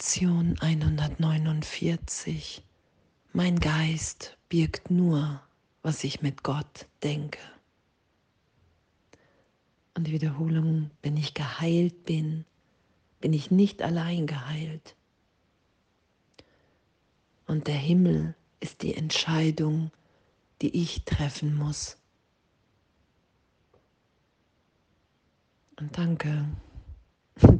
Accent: German